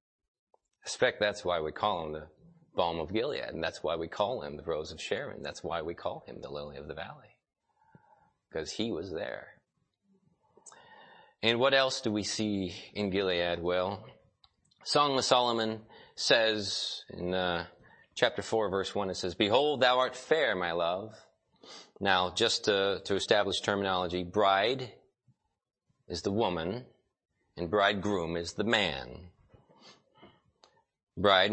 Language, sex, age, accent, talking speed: English, male, 30-49, American, 145 wpm